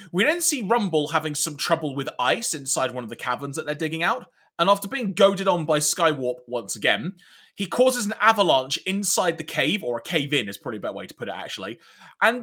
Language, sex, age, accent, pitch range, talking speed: English, male, 20-39, British, 155-220 Hz, 225 wpm